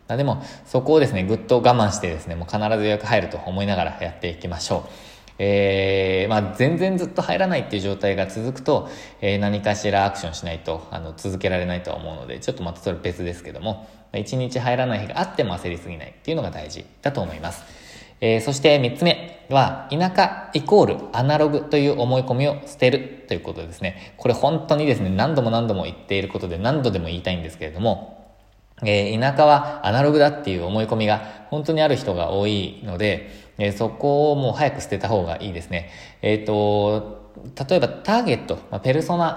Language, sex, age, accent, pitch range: Japanese, male, 20-39, native, 95-135 Hz